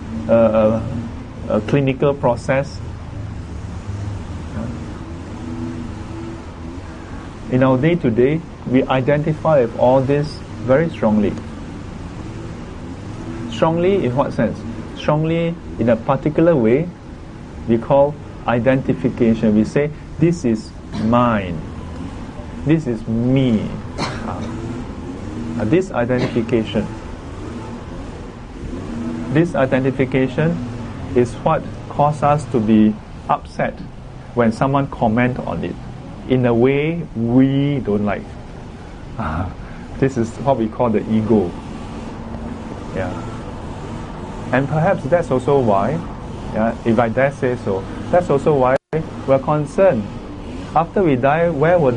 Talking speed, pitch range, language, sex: 105 wpm, 105-135 Hz, English, male